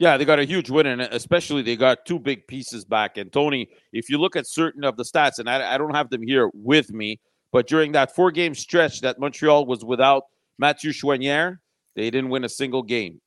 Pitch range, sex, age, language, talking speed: 125-155 Hz, male, 40-59, French, 225 wpm